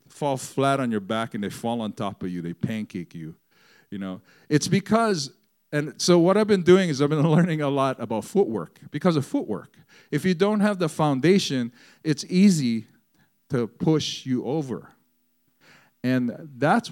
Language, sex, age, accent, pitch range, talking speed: English, male, 50-69, American, 110-155 Hz, 175 wpm